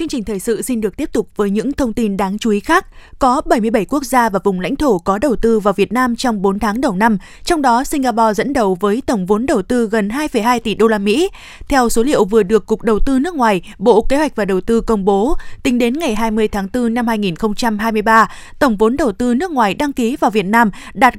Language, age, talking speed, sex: Vietnamese, 20-39, 250 wpm, female